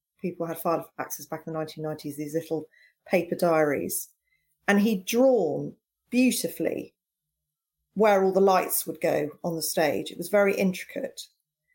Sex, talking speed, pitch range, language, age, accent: female, 150 wpm, 165-225 Hz, English, 40-59, British